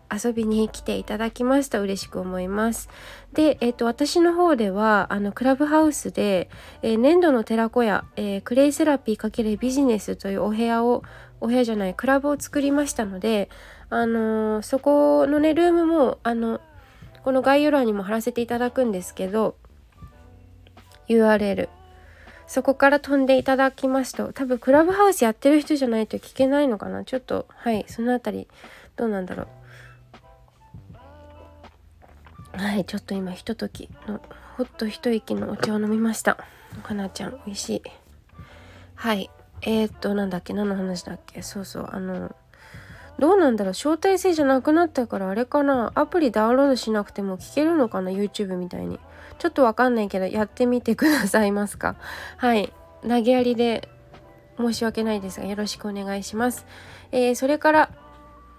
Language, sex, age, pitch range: Japanese, female, 20-39, 195-265 Hz